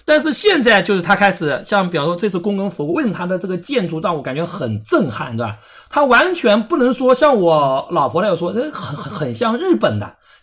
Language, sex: Chinese, male